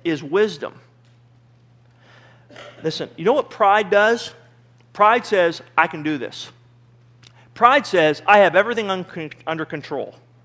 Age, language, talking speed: 40-59, English, 120 wpm